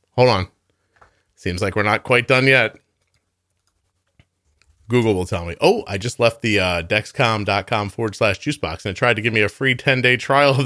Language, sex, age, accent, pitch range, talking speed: English, male, 40-59, American, 95-135 Hz, 205 wpm